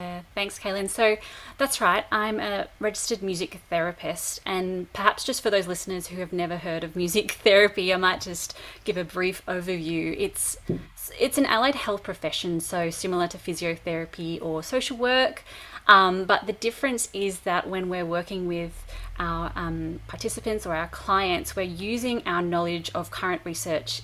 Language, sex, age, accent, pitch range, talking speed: English, female, 30-49, Australian, 170-210 Hz, 165 wpm